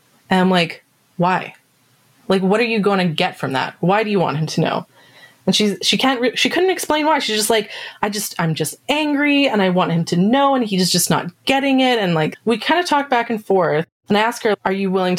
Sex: female